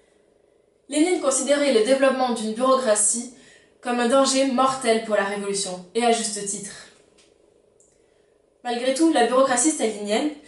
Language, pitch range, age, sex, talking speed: French, 225-295 Hz, 20-39, female, 125 wpm